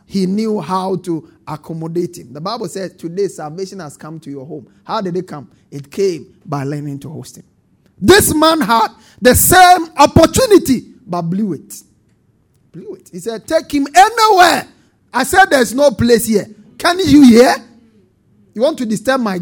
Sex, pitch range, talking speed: male, 175-270 Hz, 175 wpm